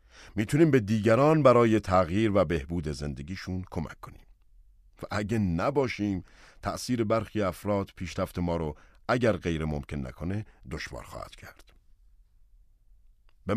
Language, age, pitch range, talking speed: Persian, 50-69, 85-120 Hz, 120 wpm